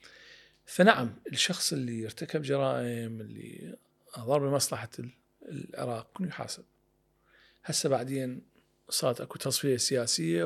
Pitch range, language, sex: 125-180 Hz, Arabic, male